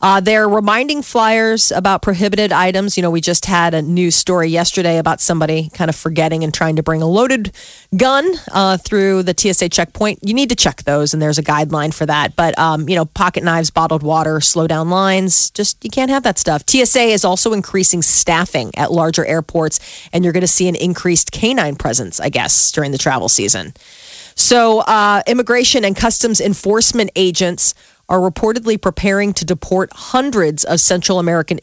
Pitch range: 165-200 Hz